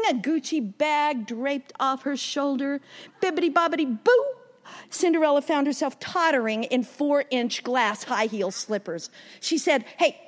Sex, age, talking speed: female, 50-69, 125 wpm